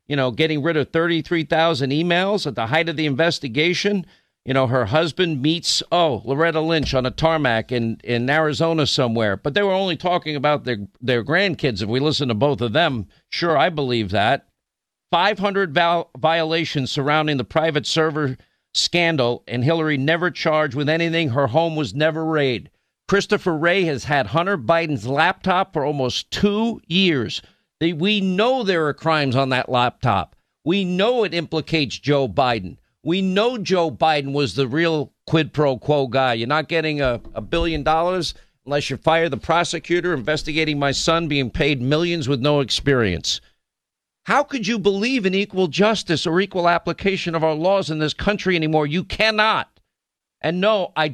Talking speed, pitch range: 170 wpm, 140-175 Hz